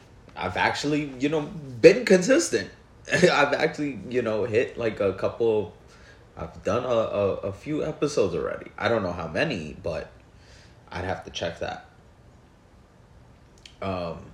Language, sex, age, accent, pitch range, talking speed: English, male, 30-49, American, 95-120 Hz, 140 wpm